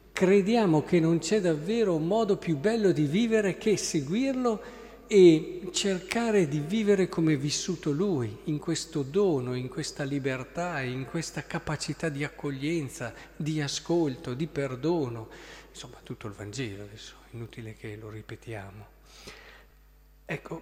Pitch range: 135-195 Hz